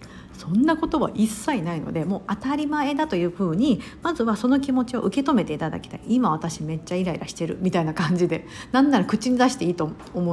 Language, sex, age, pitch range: Japanese, female, 50-69, 180-270 Hz